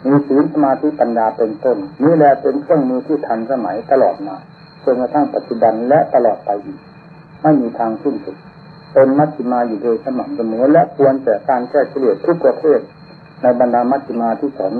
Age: 60-79